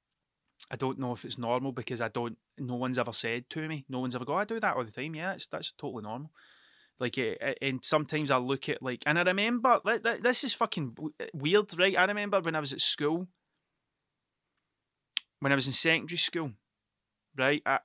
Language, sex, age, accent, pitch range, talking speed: English, male, 20-39, British, 130-155 Hz, 210 wpm